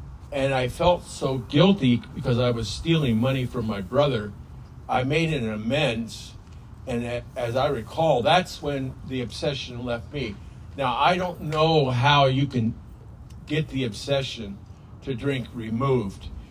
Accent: American